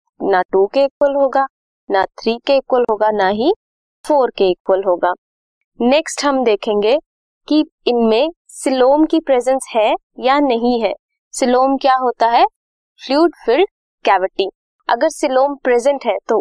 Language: Hindi